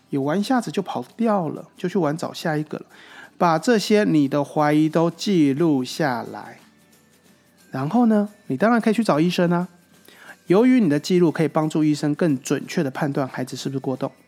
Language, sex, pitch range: Chinese, male, 140-175 Hz